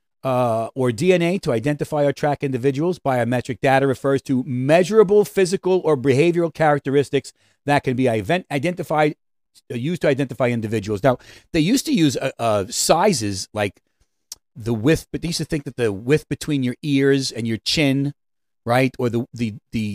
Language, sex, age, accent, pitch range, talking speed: English, male, 40-59, American, 105-140 Hz, 165 wpm